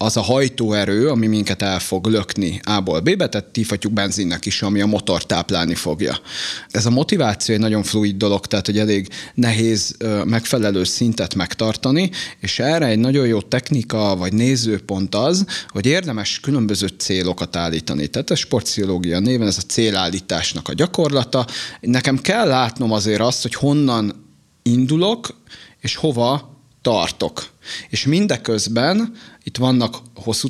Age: 30-49